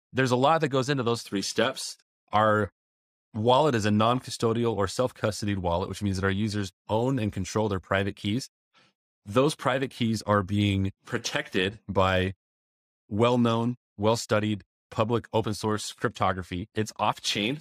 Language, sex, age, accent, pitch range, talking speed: English, male, 30-49, American, 95-115 Hz, 145 wpm